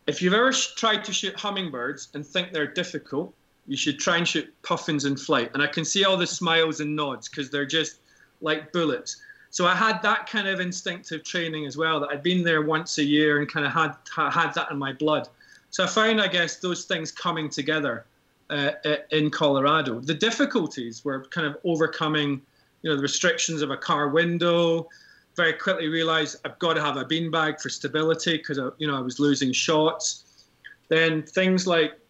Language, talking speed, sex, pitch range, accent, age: English, 200 wpm, male, 150-190 Hz, British, 30-49